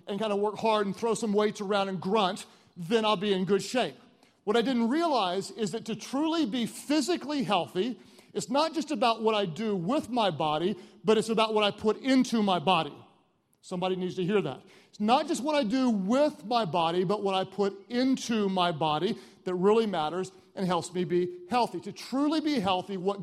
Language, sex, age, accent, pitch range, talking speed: English, male, 40-59, American, 195-260 Hz, 210 wpm